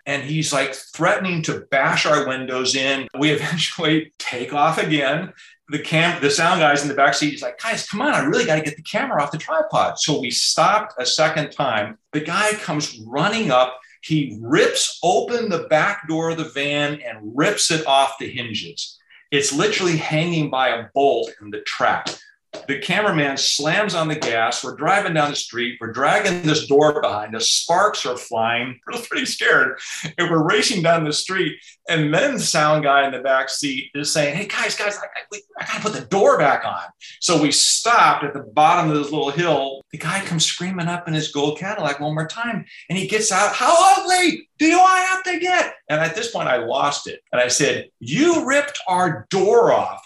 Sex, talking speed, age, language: male, 210 wpm, 40-59, English